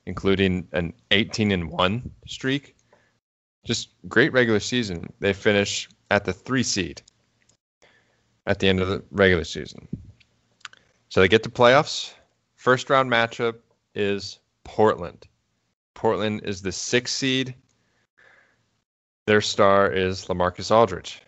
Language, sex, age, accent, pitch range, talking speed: English, male, 20-39, American, 95-115 Hz, 115 wpm